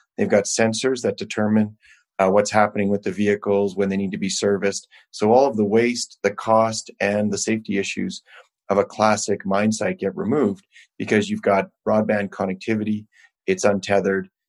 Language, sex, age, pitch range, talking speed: English, male, 30-49, 100-115 Hz, 175 wpm